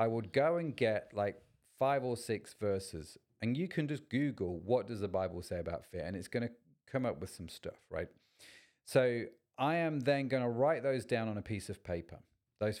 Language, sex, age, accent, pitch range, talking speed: English, male, 40-59, British, 100-125 Hz, 220 wpm